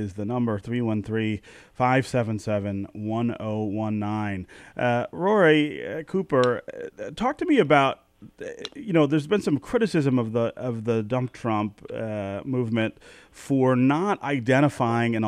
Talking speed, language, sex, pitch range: 155 wpm, English, male, 110-135 Hz